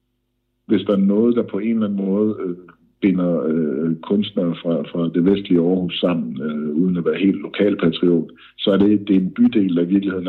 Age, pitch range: 60-79, 95-120 Hz